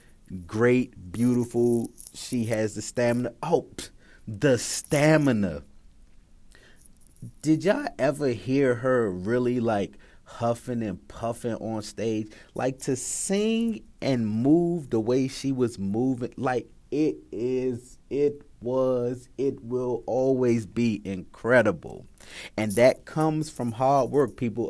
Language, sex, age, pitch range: English, male, 30-49, 100-130 Hz